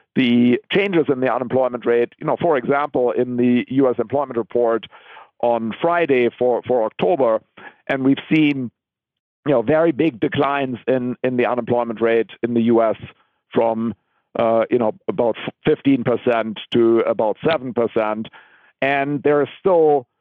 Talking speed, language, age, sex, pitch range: 145 wpm, English, 50-69, male, 115-145 Hz